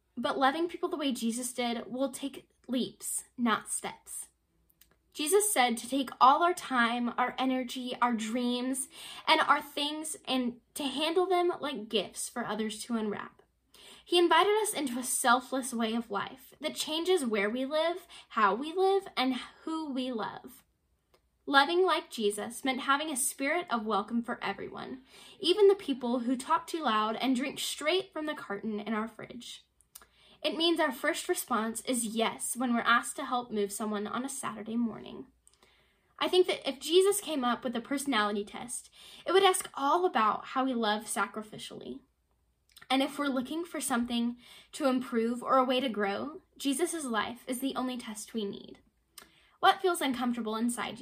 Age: 10-29